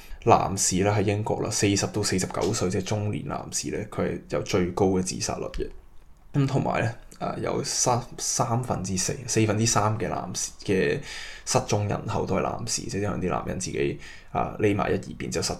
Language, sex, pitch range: Chinese, male, 90-105 Hz